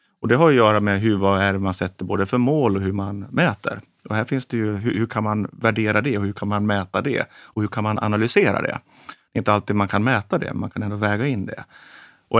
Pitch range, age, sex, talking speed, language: 95-115 Hz, 30-49, male, 270 wpm, Swedish